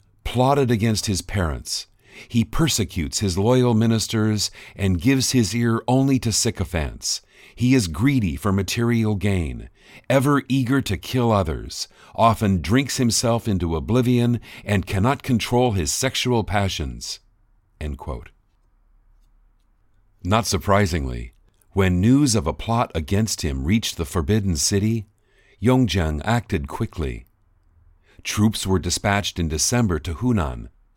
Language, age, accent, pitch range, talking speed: English, 50-69, American, 85-115 Hz, 120 wpm